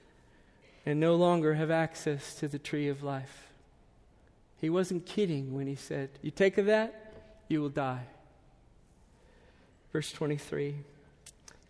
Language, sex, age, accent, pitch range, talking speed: English, male, 40-59, American, 140-165 Hz, 130 wpm